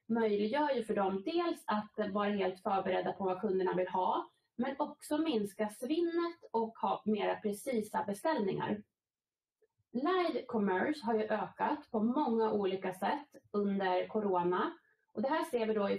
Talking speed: 155 wpm